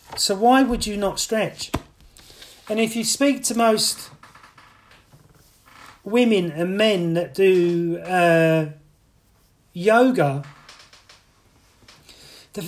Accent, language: British, English